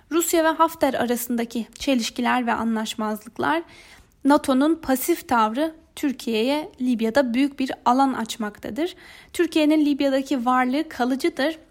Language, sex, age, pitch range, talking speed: Turkish, female, 10-29, 230-285 Hz, 105 wpm